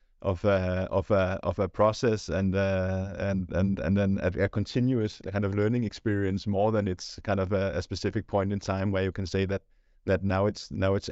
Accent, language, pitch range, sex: Danish, English, 90-105 Hz, male